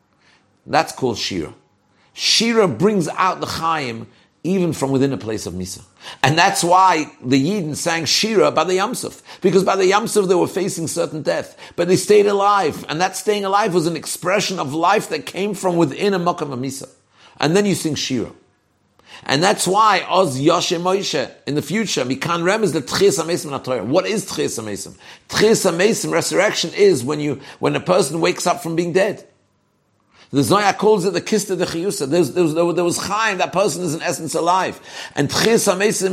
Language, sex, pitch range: English, male, 155-200 Hz